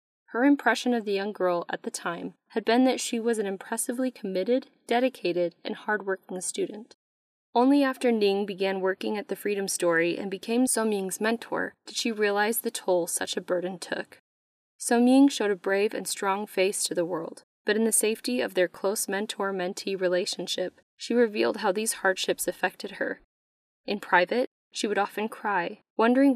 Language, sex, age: English, female, 10-29